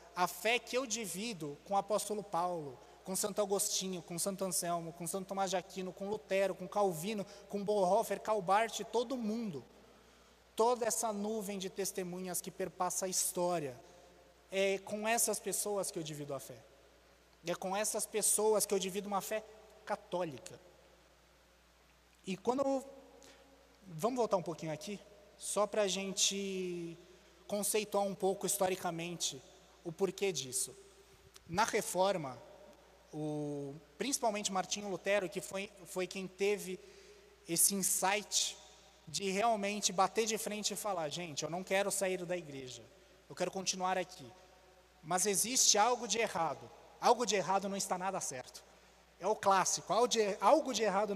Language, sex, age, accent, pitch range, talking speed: Portuguese, male, 20-39, Brazilian, 180-210 Hz, 145 wpm